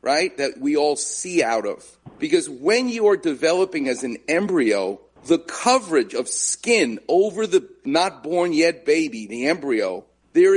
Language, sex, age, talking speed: English, male, 50-69, 160 wpm